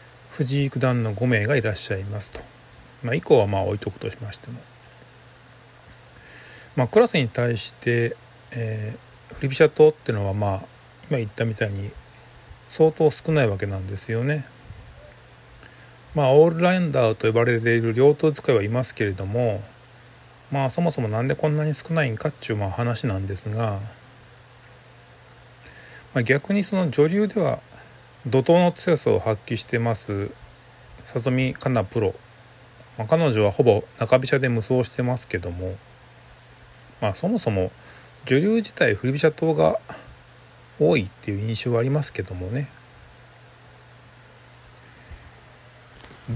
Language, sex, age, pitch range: Japanese, male, 40-59, 115-140 Hz